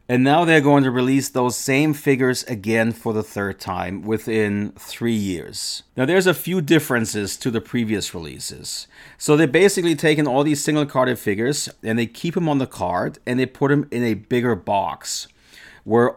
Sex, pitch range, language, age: male, 110-145 Hz, English, 40-59